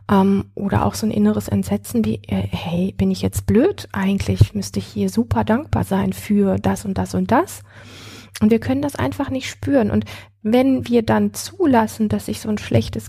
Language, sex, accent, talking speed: German, female, German, 195 wpm